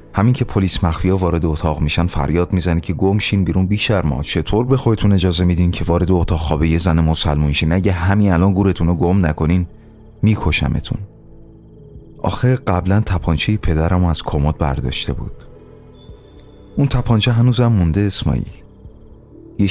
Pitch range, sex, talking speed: 80-110 Hz, male, 140 wpm